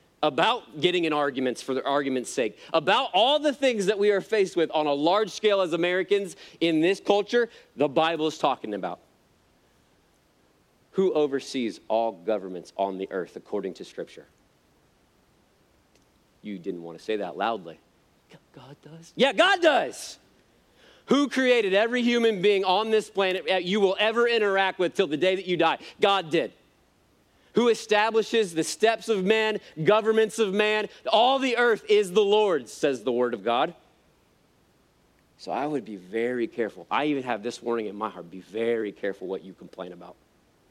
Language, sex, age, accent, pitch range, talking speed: English, male, 40-59, American, 130-220 Hz, 170 wpm